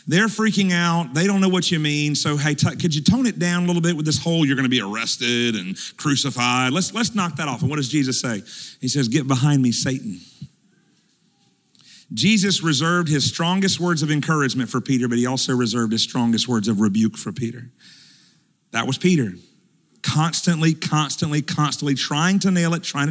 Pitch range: 130-170 Hz